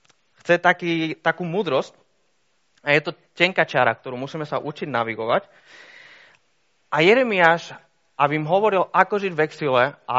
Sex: male